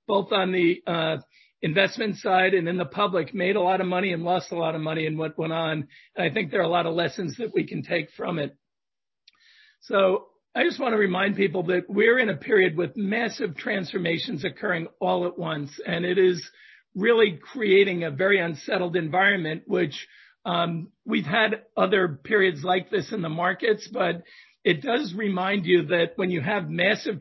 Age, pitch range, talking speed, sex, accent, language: 50-69, 170-210 Hz, 195 wpm, male, American, English